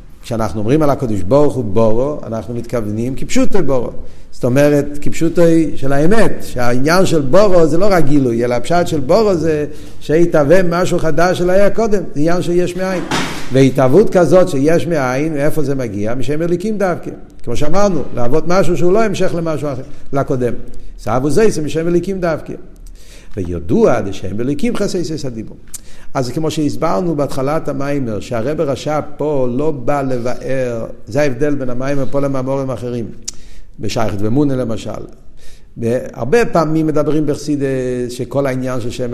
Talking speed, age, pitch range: 150 wpm, 50-69, 120-170 Hz